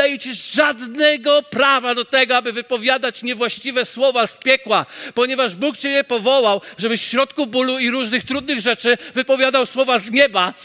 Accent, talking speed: native, 165 wpm